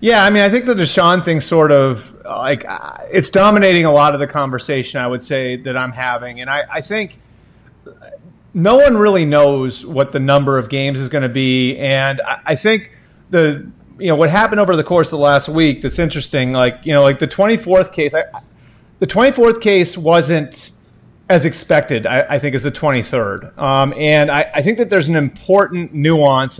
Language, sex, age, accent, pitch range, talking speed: English, male, 30-49, American, 135-175 Hz, 210 wpm